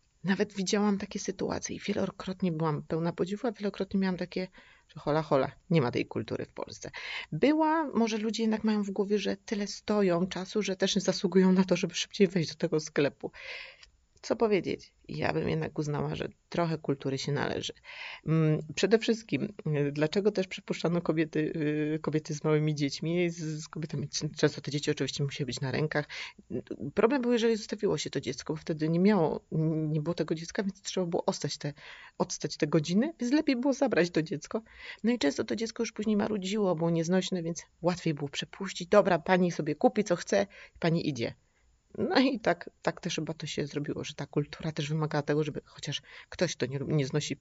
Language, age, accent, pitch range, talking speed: Polish, 30-49, native, 150-200 Hz, 190 wpm